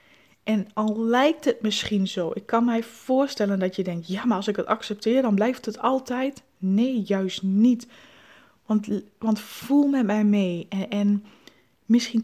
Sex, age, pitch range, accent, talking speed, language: female, 20-39, 200-240 Hz, Dutch, 170 wpm, Dutch